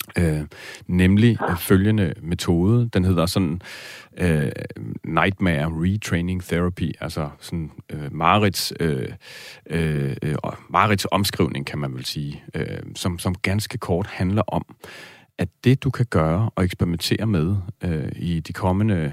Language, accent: Danish, native